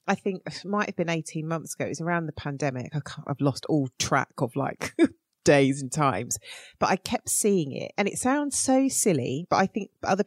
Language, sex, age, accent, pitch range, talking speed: English, female, 30-49, British, 150-230 Hz, 230 wpm